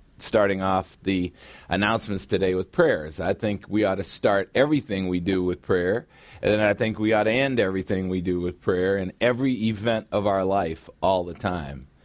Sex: male